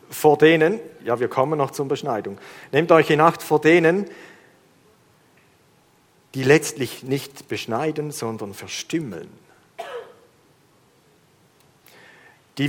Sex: male